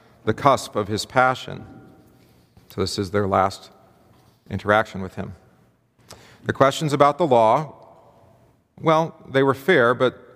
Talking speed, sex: 135 wpm, male